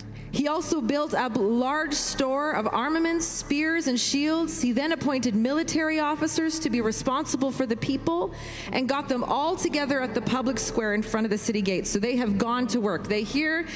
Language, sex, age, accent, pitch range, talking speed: English, female, 30-49, American, 225-305 Hz, 200 wpm